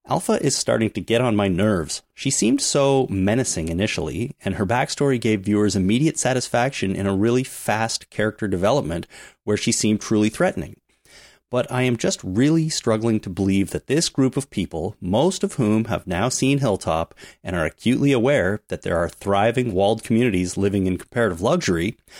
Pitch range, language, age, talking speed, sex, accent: 95-125 Hz, English, 30-49, 175 wpm, male, American